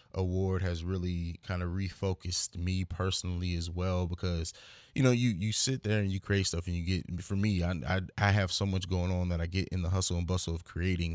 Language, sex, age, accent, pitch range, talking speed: English, male, 20-39, American, 90-105 Hz, 235 wpm